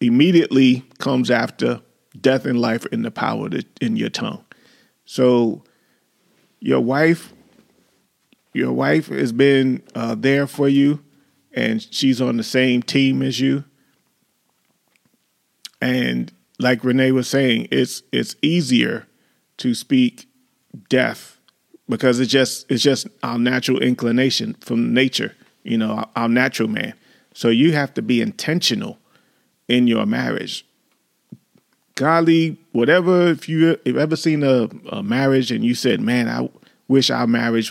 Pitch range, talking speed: 115-140 Hz, 135 wpm